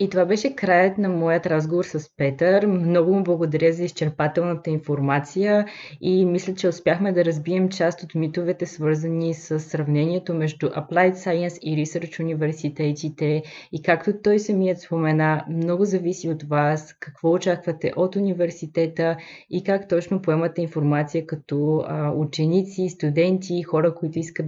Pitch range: 150-180 Hz